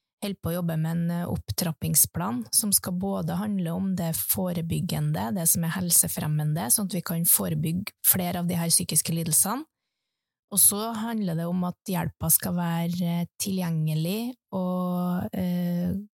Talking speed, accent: 150 wpm, Swedish